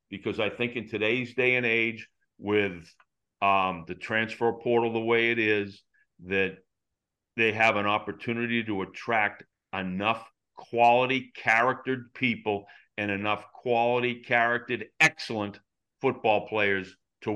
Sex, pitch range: male, 100-125 Hz